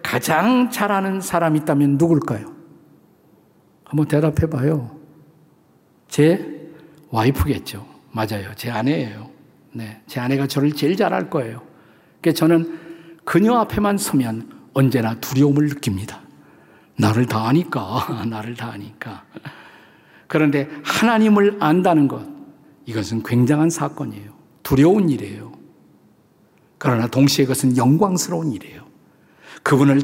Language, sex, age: Korean, male, 50-69